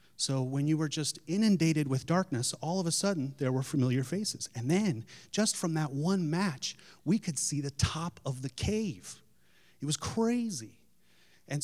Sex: male